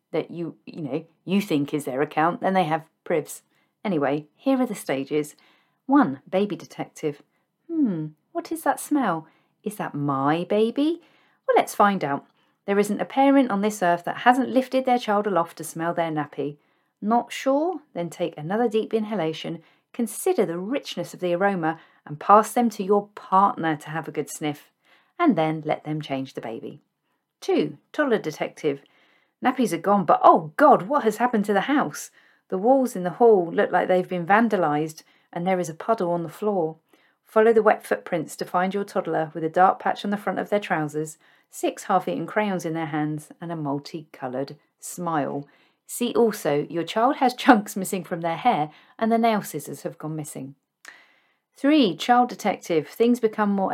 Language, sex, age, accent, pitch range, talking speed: English, female, 40-59, British, 160-225 Hz, 185 wpm